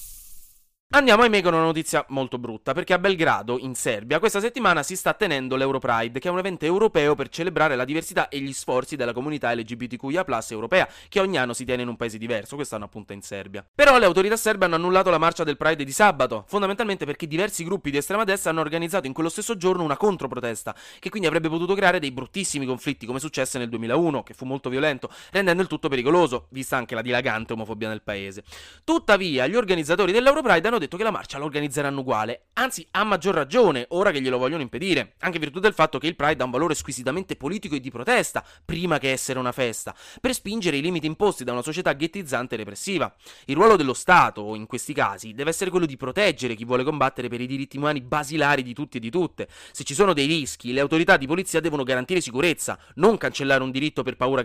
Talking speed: 215 wpm